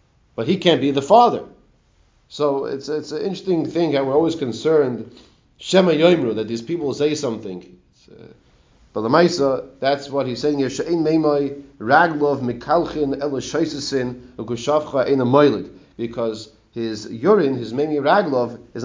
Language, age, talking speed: English, 30-49, 120 wpm